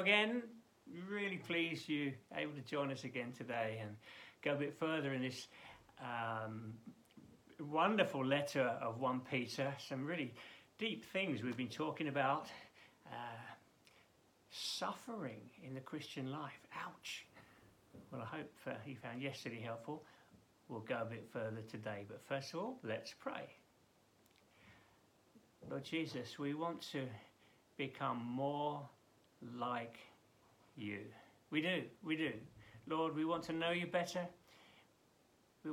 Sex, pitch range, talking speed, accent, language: male, 115-160 Hz, 135 wpm, British, English